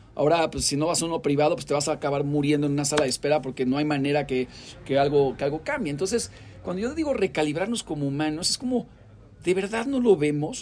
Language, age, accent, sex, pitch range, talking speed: Spanish, 40-59, Mexican, male, 145-200 Hz, 235 wpm